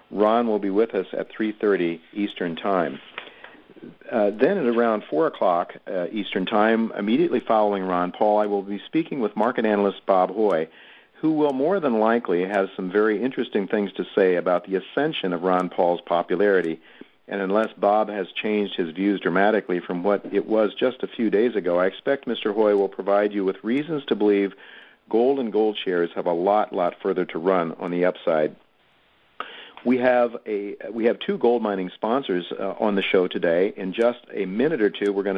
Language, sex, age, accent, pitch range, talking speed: English, male, 50-69, American, 95-110 Hz, 190 wpm